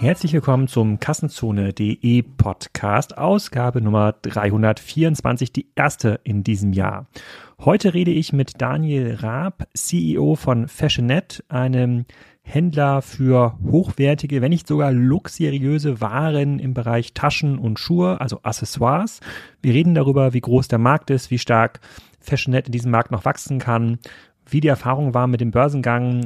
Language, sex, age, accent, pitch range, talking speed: German, male, 30-49, German, 115-145 Hz, 140 wpm